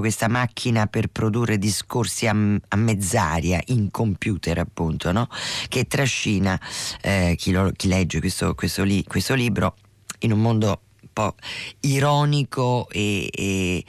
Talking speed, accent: 115 wpm, native